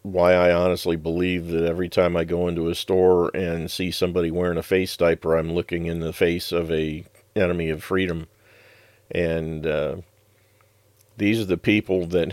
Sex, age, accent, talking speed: male, 50-69, American, 175 wpm